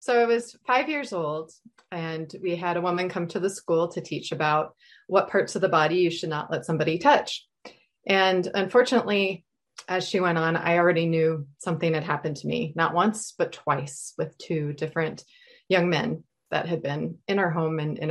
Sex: female